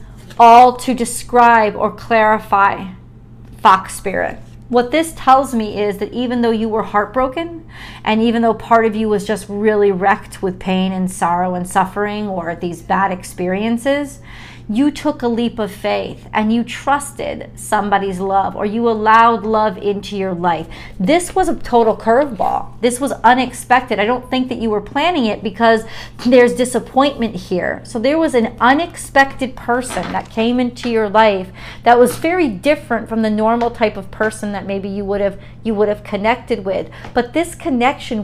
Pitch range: 205-255 Hz